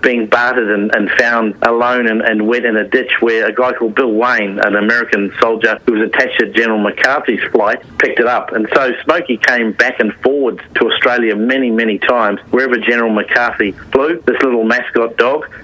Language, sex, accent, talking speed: English, male, Australian, 195 wpm